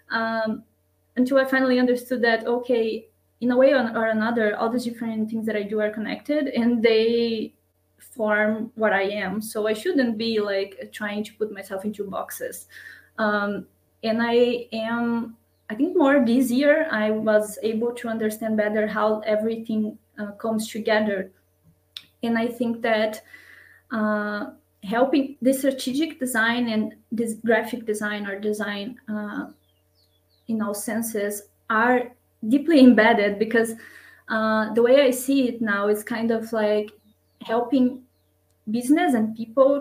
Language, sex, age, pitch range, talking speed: English, female, 20-39, 215-245 Hz, 145 wpm